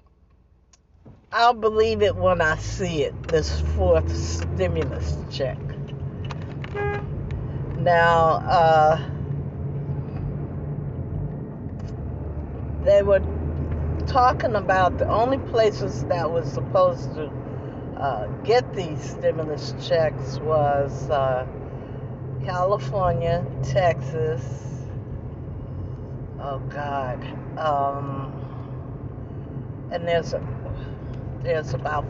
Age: 50-69